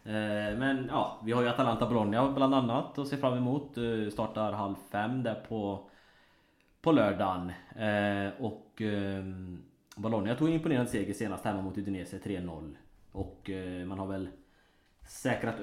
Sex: male